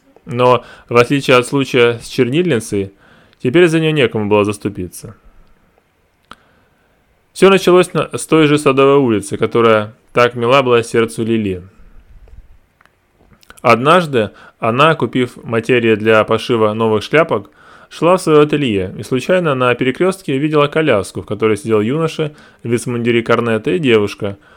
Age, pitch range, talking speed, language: 20-39, 105-140 Hz, 125 wpm, Russian